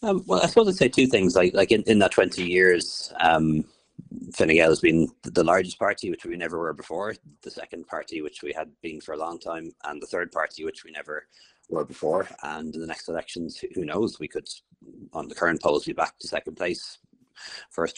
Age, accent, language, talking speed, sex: 30-49, Irish, English, 225 wpm, male